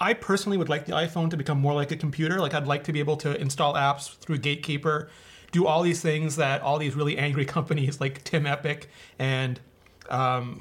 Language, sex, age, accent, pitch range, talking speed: English, male, 30-49, American, 140-185 Hz, 215 wpm